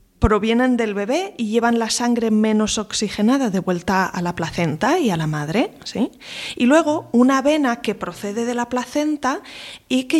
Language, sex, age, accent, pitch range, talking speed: Spanish, female, 20-39, Spanish, 205-260 Hz, 170 wpm